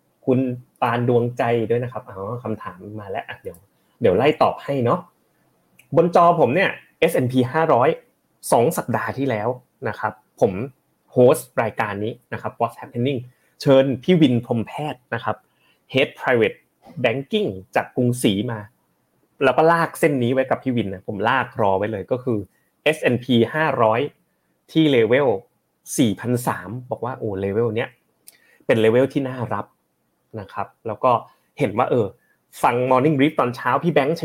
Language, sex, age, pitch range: Thai, male, 20-39, 115-145 Hz